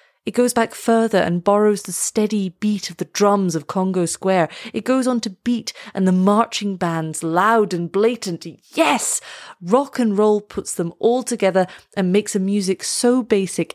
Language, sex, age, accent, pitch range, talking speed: English, female, 30-49, British, 175-220 Hz, 180 wpm